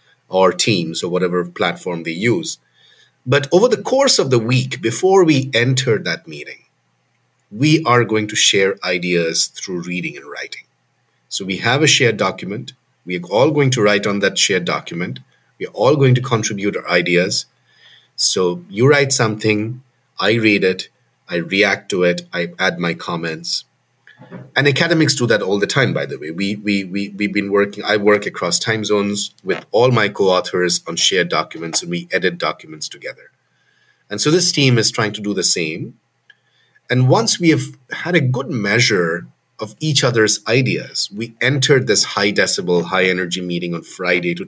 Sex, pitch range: male, 95-130 Hz